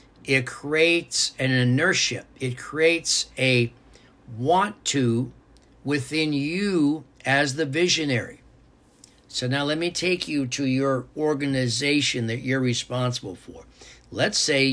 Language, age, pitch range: English, 60-79, 125-155 Hz